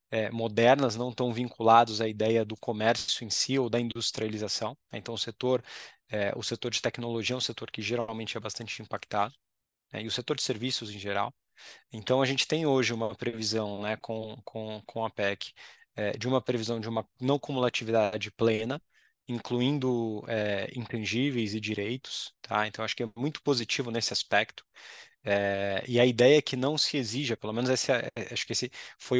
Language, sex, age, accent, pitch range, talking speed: Portuguese, male, 20-39, Brazilian, 110-130 Hz, 175 wpm